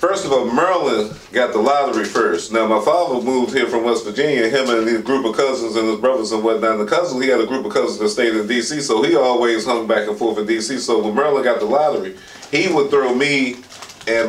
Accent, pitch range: American, 115-145 Hz